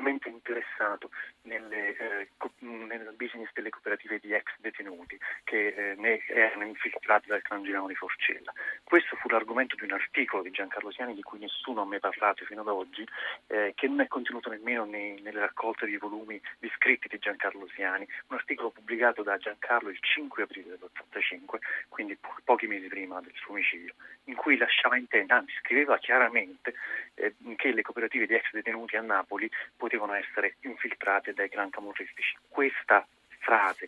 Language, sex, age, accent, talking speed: Italian, male, 40-59, native, 170 wpm